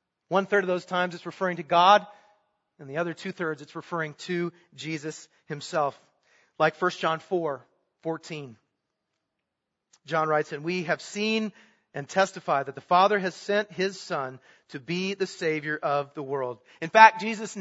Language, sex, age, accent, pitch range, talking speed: English, male, 40-59, American, 160-195 Hz, 165 wpm